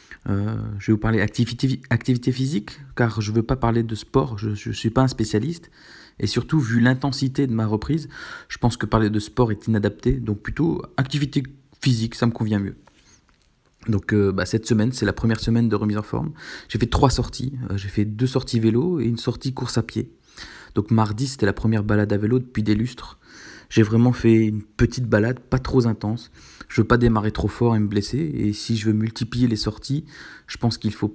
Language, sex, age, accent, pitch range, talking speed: French, male, 20-39, French, 105-125 Hz, 220 wpm